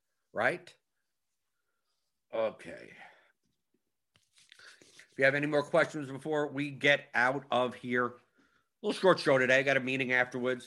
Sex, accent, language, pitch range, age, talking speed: male, American, English, 120-155 Hz, 50-69, 135 wpm